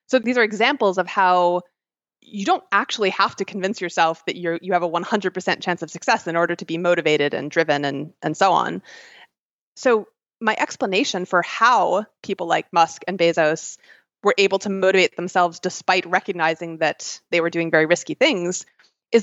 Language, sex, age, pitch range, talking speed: English, female, 20-39, 170-215 Hz, 180 wpm